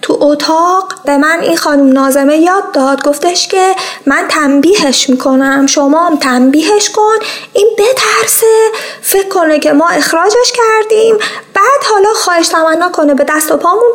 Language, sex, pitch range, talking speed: Persian, female, 270-370 Hz, 150 wpm